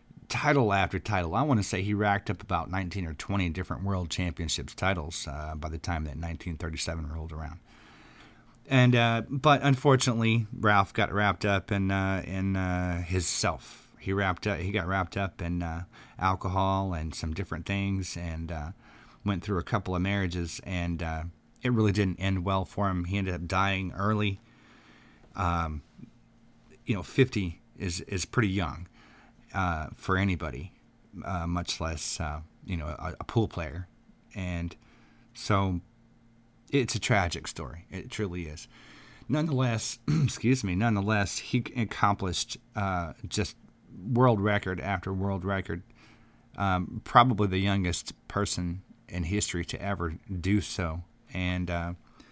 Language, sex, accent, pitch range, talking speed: English, male, American, 85-115 Hz, 150 wpm